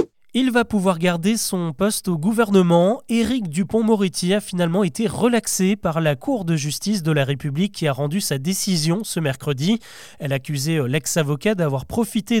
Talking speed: 170 wpm